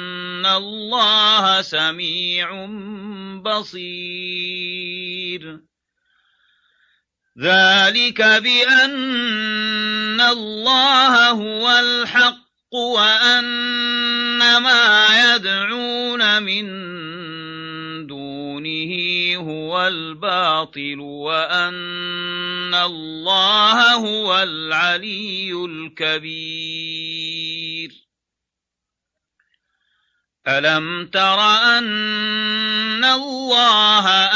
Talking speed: 45 wpm